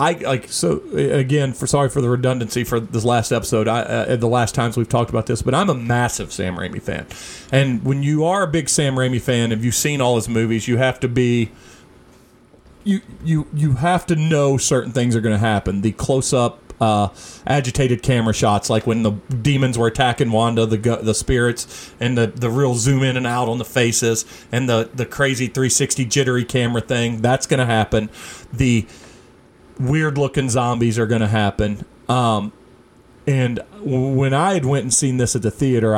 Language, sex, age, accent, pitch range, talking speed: English, male, 40-59, American, 110-135 Hz, 195 wpm